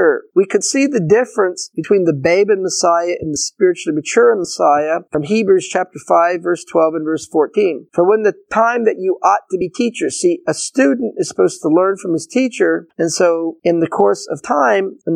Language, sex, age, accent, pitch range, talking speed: English, male, 40-59, American, 165-230 Hz, 205 wpm